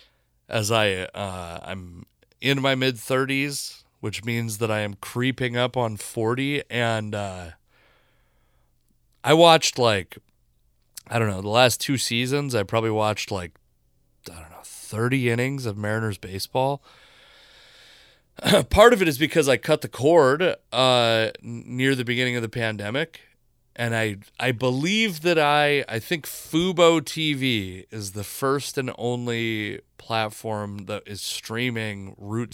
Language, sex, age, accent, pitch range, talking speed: English, male, 30-49, American, 105-130 Hz, 140 wpm